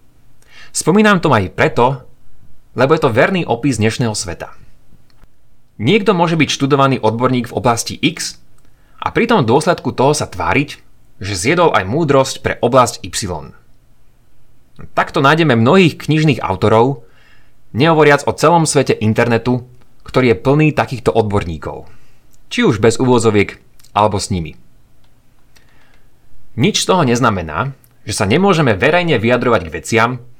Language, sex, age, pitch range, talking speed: Slovak, male, 30-49, 115-150 Hz, 130 wpm